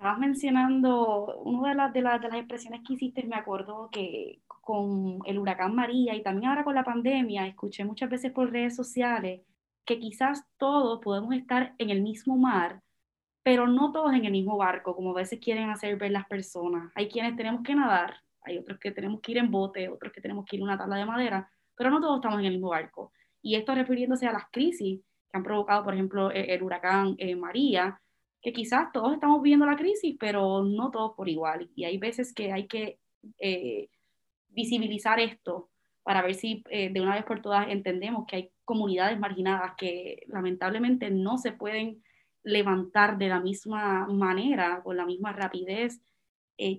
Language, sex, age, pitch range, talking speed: Spanish, female, 20-39, 190-240 Hz, 195 wpm